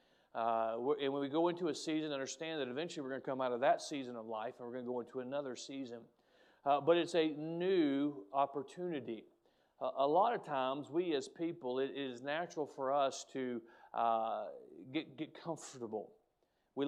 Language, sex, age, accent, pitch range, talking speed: English, male, 40-59, American, 130-160 Hz, 190 wpm